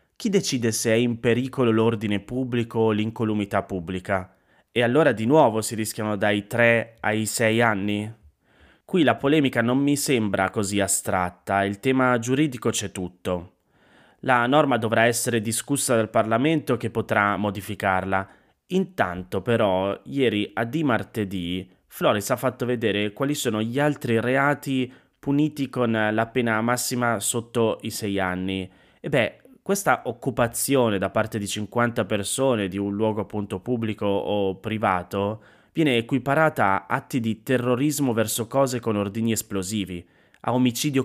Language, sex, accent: Italian, male, native